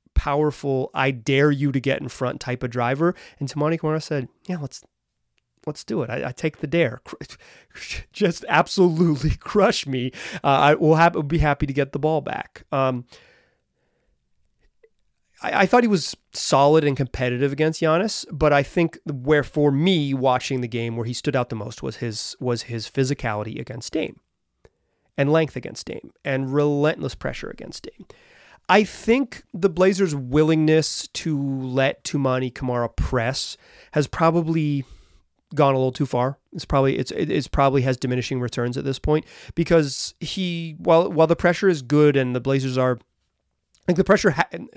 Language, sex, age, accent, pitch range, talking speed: English, male, 30-49, American, 130-165 Hz, 175 wpm